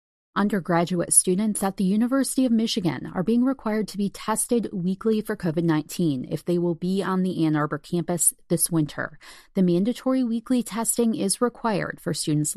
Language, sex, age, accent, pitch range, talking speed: English, female, 30-49, American, 165-205 Hz, 165 wpm